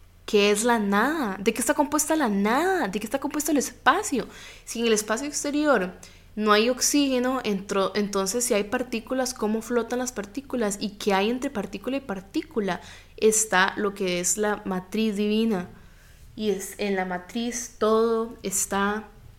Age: 10-29